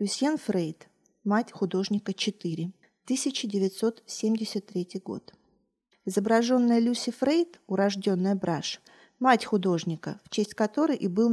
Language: Russian